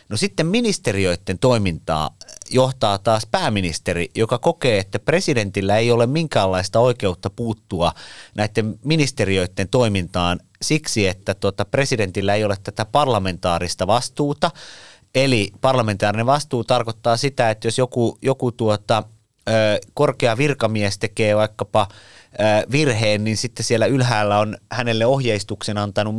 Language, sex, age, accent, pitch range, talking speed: Finnish, male, 30-49, native, 100-125 Hz, 110 wpm